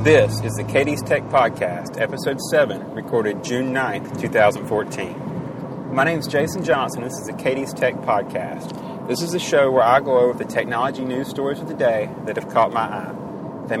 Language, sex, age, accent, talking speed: English, male, 30-49, American, 190 wpm